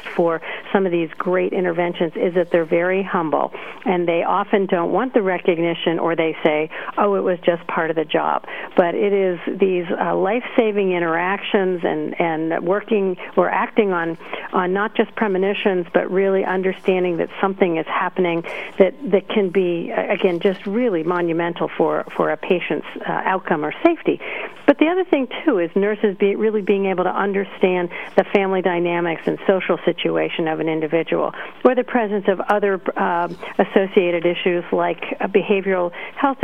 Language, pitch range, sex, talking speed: English, 175-205 Hz, female, 160 wpm